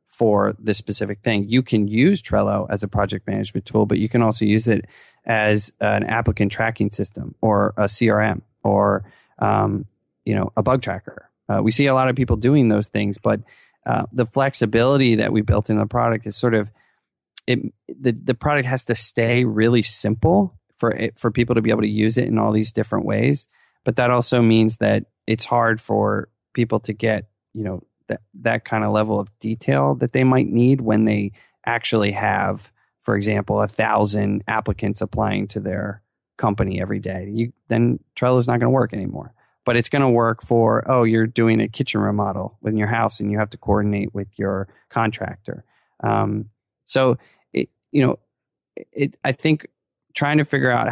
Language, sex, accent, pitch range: English, male, American, 105-120 Hz